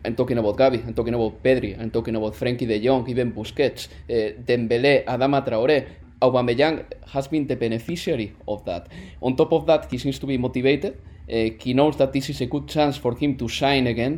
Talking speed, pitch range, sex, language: 210 wpm, 115-150 Hz, male, English